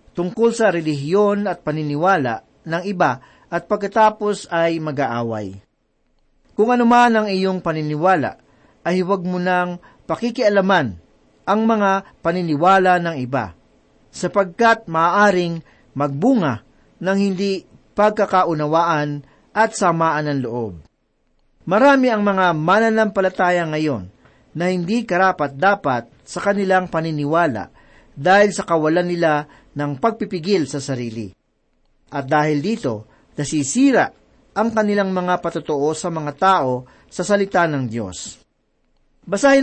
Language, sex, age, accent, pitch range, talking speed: Filipino, male, 40-59, native, 145-205 Hz, 110 wpm